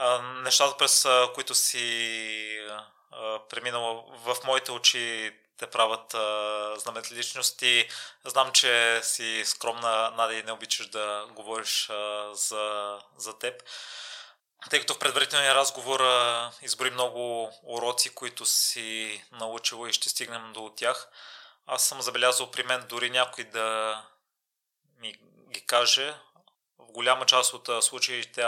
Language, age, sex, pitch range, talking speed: Bulgarian, 20-39, male, 110-125 Hz, 120 wpm